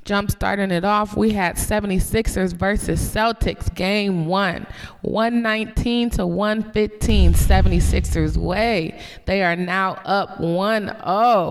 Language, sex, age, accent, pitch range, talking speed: English, female, 20-39, American, 170-215 Hz, 115 wpm